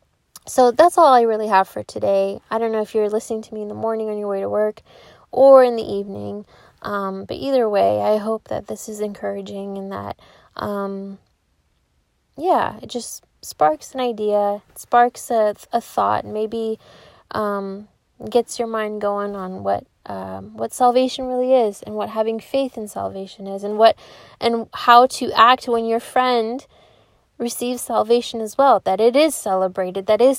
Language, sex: English, female